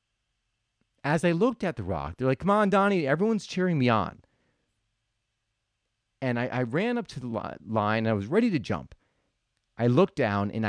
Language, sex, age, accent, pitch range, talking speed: English, male, 40-59, American, 105-140 Hz, 185 wpm